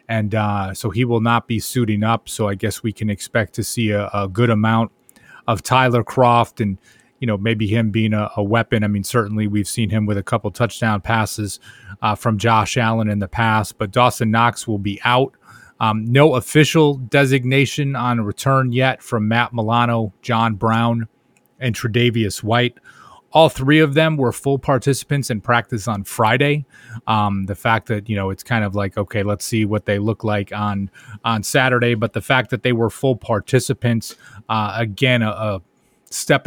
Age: 30-49